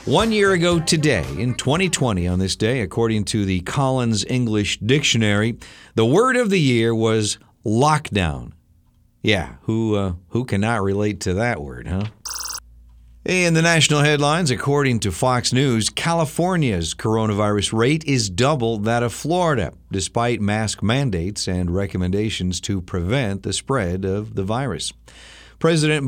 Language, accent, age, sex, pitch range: Japanese, American, 50-69, male, 95-125 Hz